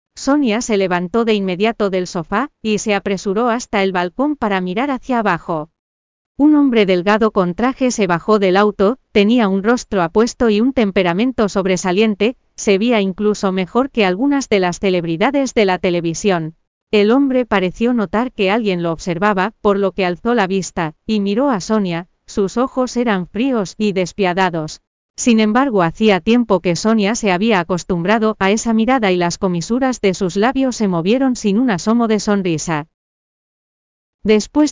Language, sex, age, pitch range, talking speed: Spanish, female, 40-59, 185-235 Hz, 165 wpm